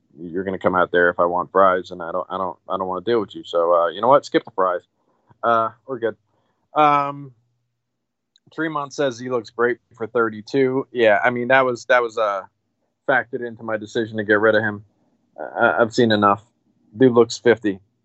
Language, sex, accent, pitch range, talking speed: English, male, American, 105-145 Hz, 215 wpm